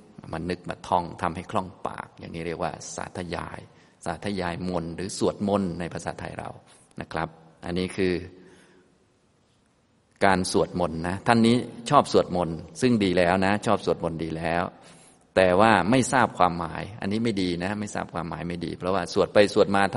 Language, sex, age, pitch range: Thai, male, 20-39, 85-105 Hz